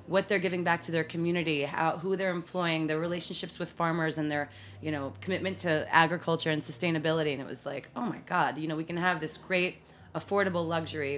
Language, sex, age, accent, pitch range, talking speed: English, female, 30-49, American, 160-200 Hz, 215 wpm